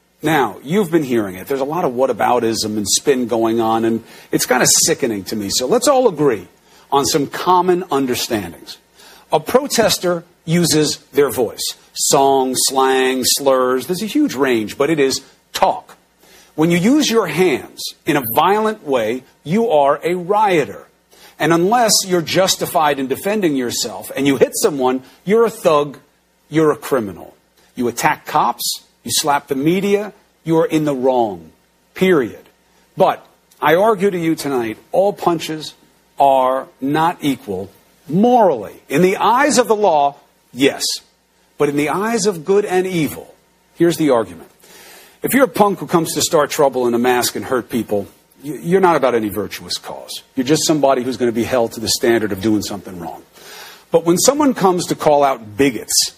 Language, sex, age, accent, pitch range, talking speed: English, male, 50-69, American, 130-185 Hz, 175 wpm